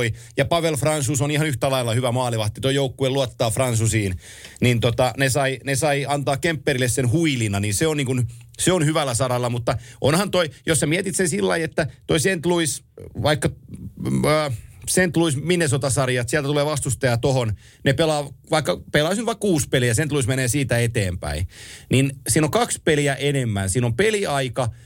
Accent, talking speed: native, 175 wpm